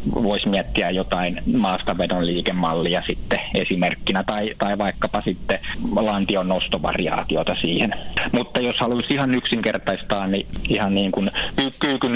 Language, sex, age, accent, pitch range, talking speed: Finnish, male, 20-39, native, 95-110 Hz, 105 wpm